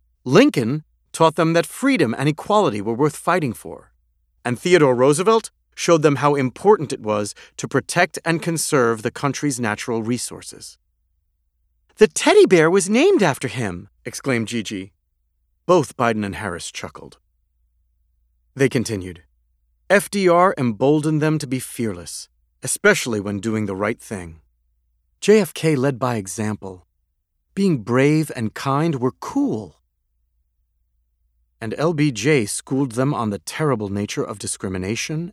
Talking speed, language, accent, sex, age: 130 wpm, English, American, male, 40-59